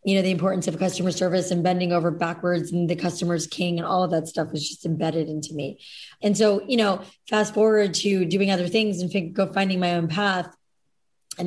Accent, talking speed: American, 220 wpm